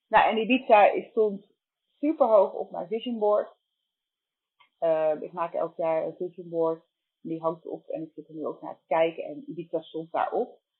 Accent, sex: Dutch, female